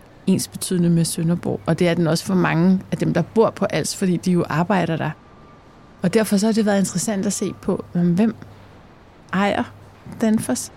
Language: Danish